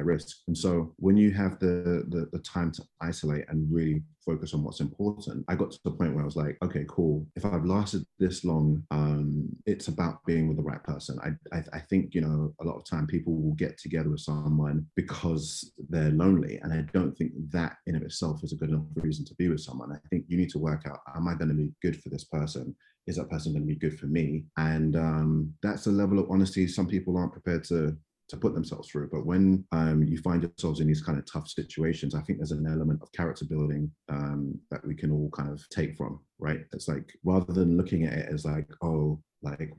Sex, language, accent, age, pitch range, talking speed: male, English, British, 30-49, 75-85 Hz, 240 wpm